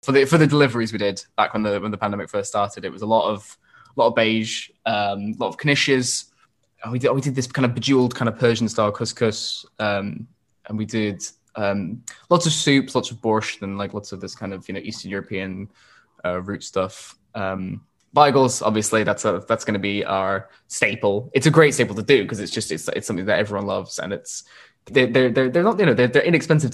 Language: English